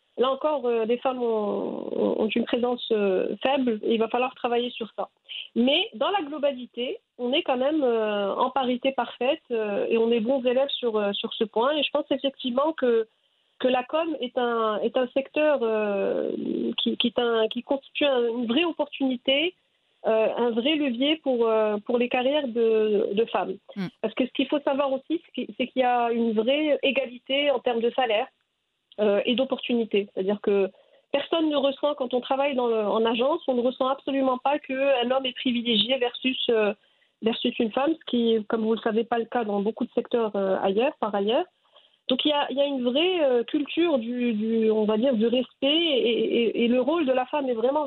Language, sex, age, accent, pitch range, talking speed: English, female, 40-59, French, 230-275 Hz, 200 wpm